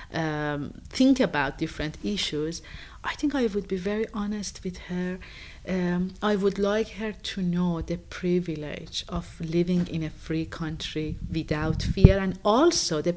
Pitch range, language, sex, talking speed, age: 165-205 Hz, English, female, 155 wpm, 40-59